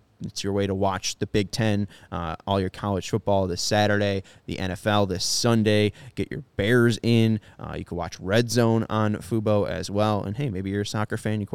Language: English